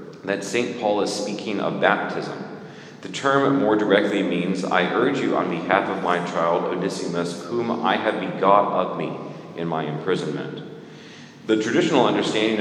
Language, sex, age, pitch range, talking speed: English, male, 40-59, 85-100 Hz, 155 wpm